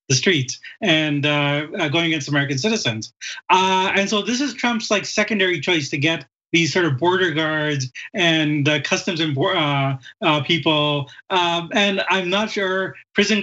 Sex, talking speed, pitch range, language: male, 140 wpm, 150-210 Hz, English